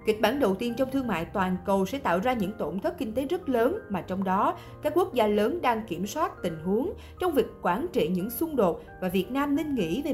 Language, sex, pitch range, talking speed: Vietnamese, female, 185-270 Hz, 260 wpm